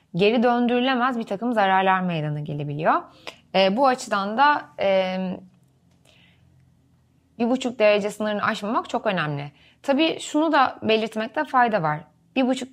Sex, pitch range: female, 170-235 Hz